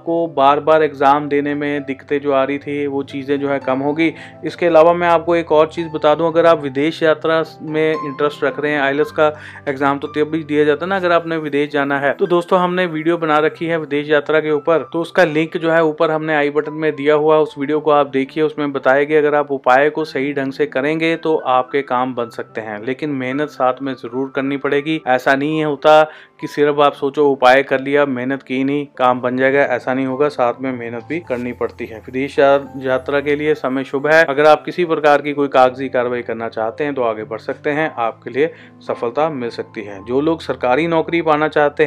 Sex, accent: male, native